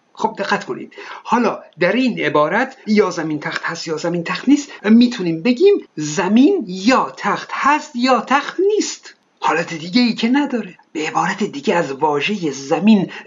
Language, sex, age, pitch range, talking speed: Persian, male, 50-69, 185-250 Hz, 160 wpm